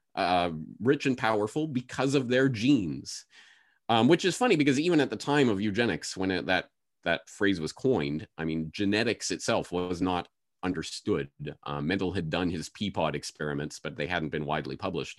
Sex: male